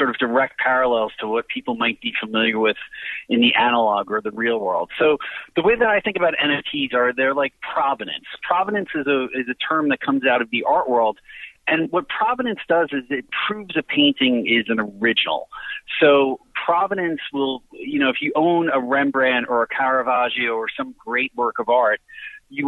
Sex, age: male, 30-49